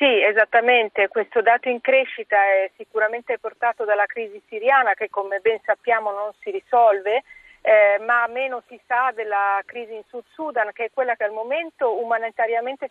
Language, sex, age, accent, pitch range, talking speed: Italian, female, 40-59, native, 220-255 Hz, 165 wpm